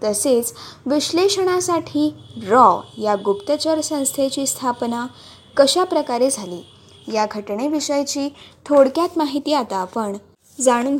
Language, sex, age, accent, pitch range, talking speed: Marathi, female, 20-39, native, 215-300 Hz, 95 wpm